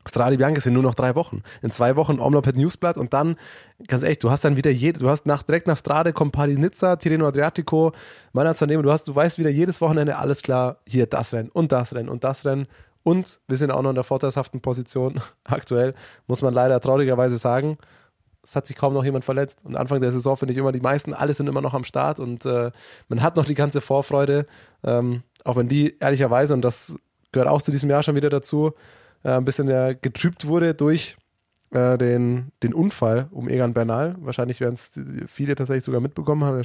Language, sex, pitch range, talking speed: German, male, 125-145 Hz, 215 wpm